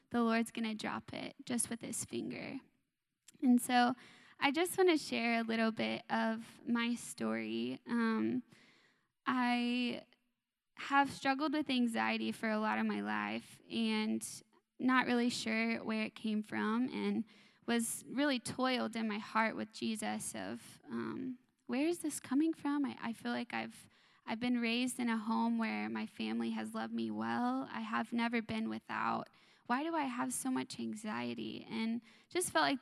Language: English